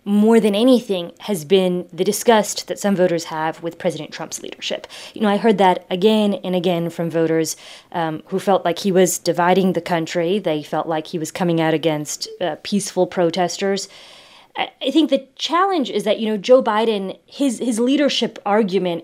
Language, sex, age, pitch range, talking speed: English, female, 20-39, 175-225 Hz, 185 wpm